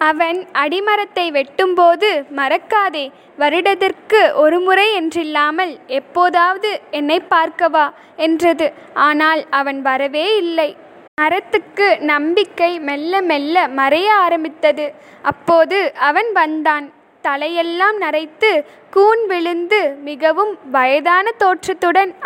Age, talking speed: 20-39, 85 wpm